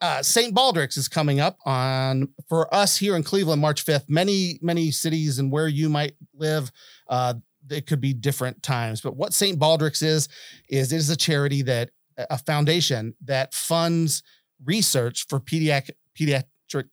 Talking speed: 165 wpm